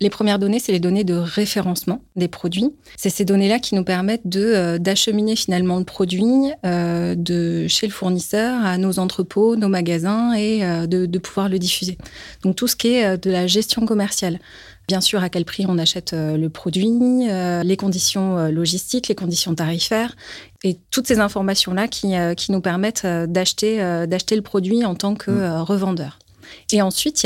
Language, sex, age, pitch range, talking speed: French, female, 30-49, 175-210 Hz, 175 wpm